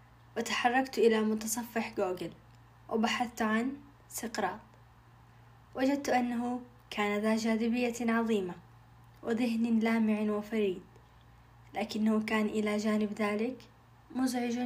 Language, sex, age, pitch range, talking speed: Arabic, female, 20-39, 205-230 Hz, 90 wpm